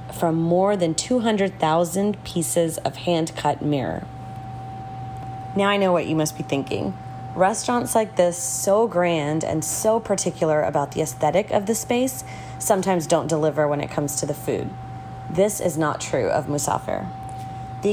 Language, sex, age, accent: English, female, 30-49, American